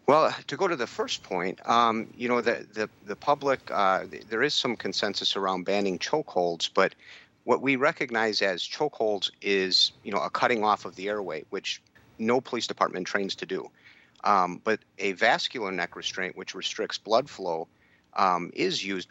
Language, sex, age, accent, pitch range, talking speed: English, male, 50-69, American, 95-115 Hz, 180 wpm